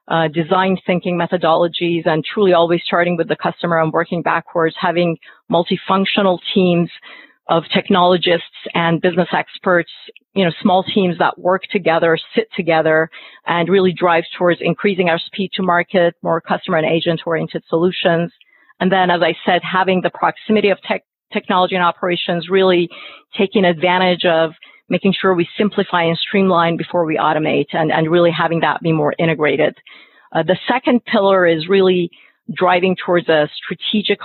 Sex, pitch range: female, 170-195 Hz